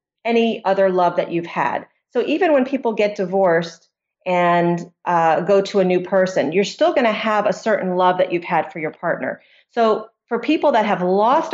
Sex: female